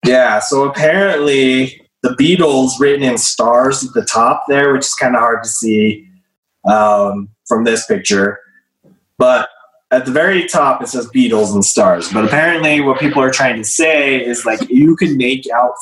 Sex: male